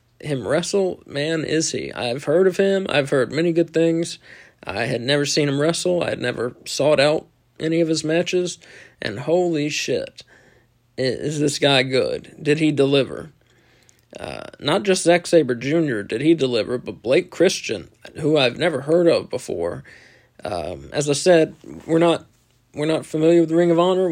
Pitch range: 135-170 Hz